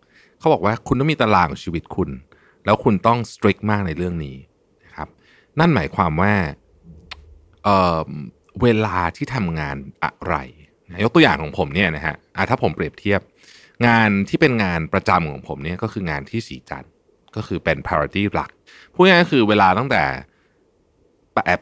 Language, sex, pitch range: Thai, male, 80-120 Hz